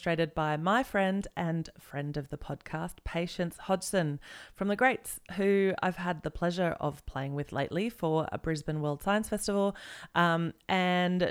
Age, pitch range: 30-49, 150-195 Hz